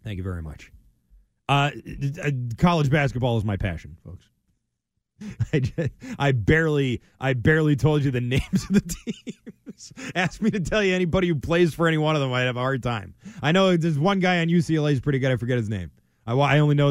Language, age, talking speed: English, 30-49, 215 wpm